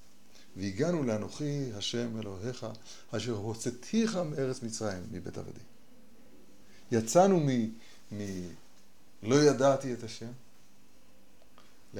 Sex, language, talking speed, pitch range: male, Hebrew, 80 wpm, 95-130 Hz